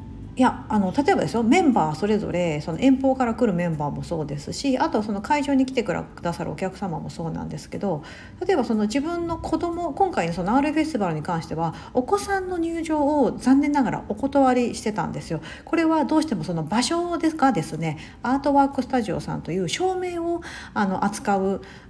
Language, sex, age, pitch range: Japanese, female, 50-69, 180-275 Hz